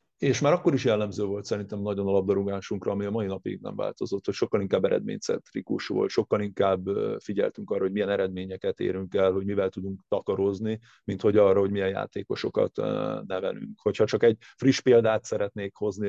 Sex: male